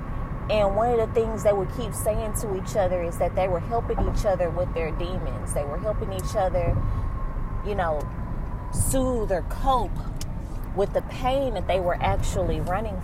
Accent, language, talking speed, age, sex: American, English, 185 wpm, 20-39, female